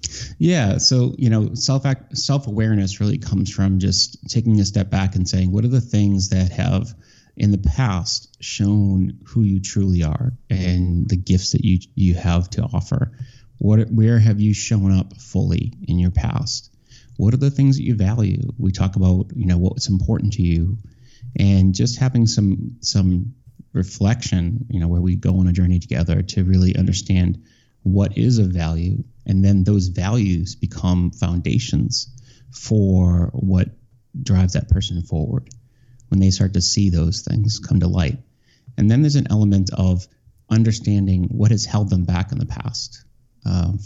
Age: 30-49